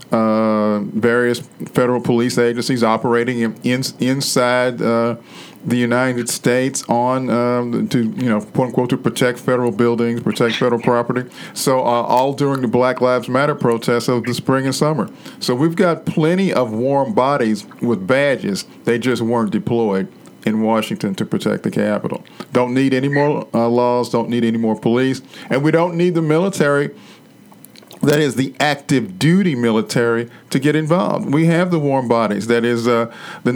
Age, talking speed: 50-69, 170 wpm